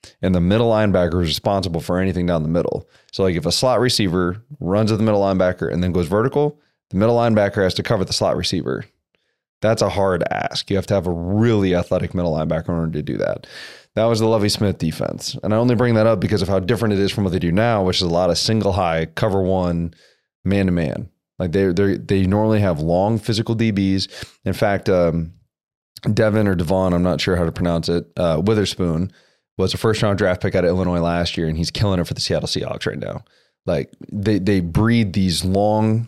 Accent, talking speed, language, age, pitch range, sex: American, 230 wpm, English, 30-49, 90-105 Hz, male